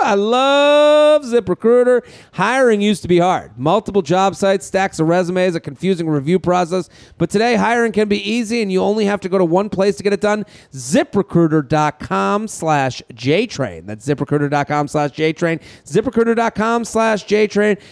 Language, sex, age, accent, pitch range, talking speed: English, male, 40-59, American, 175-215 Hz, 155 wpm